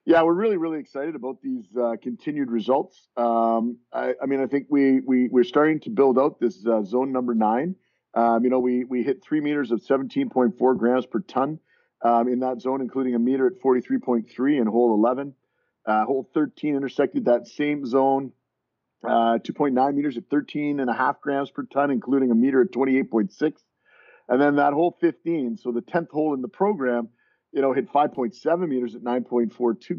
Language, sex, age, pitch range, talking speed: English, male, 50-69, 120-150 Hz, 185 wpm